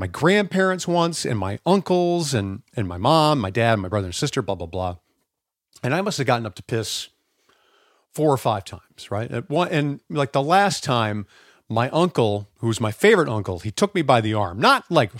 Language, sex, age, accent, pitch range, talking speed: English, male, 40-59, American, 105-150 Hz, 215 wpm